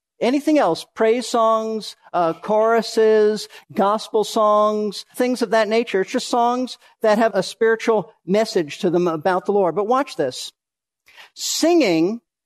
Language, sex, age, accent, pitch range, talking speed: English, male, 50-69, American, 185-250 Hz, 140 wpm